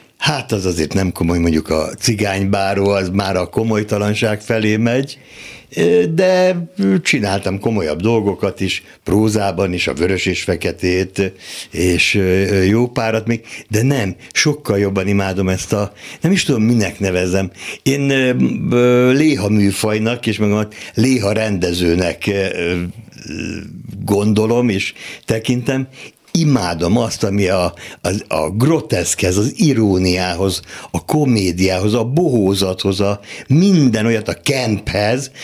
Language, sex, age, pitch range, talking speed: Hungarian, male, 60-79, 95-120 Hz, 115 wpm